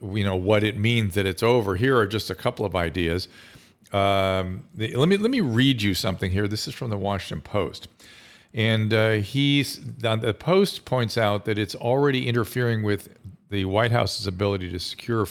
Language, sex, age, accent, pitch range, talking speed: English, male, 50-69, American, 100-125 Hz, 190 wpm